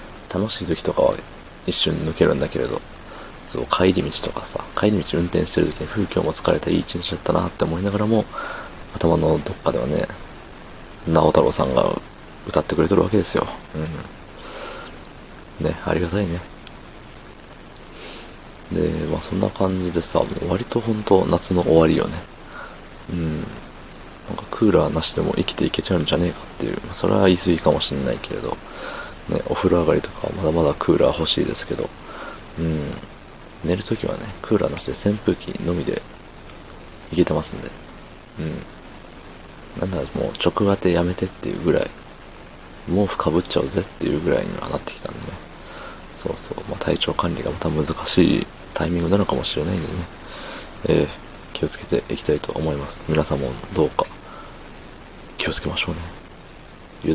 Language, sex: Japanese, male